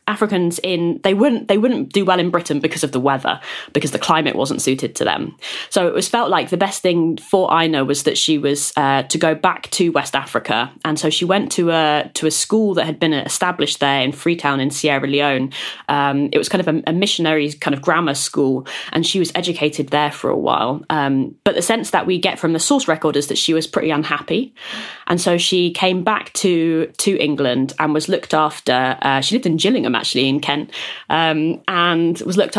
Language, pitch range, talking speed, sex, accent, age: English, 145-175 Hz, 225 wpm, female, British, 20-39